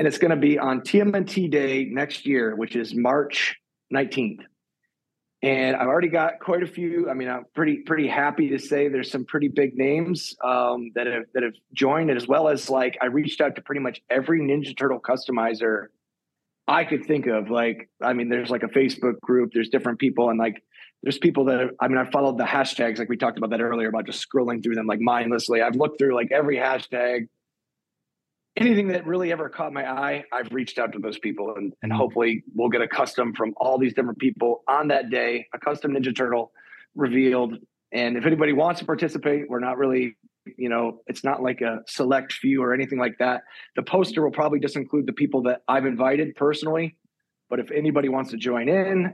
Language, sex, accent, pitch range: English, male, American, 120-145 Hz